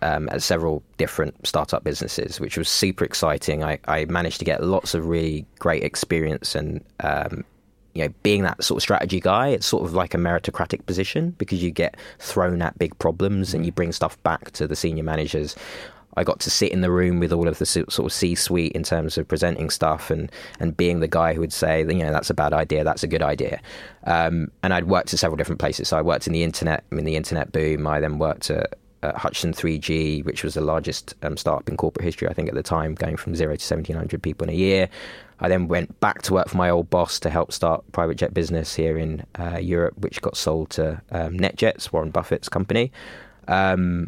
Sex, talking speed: male, 230 wpm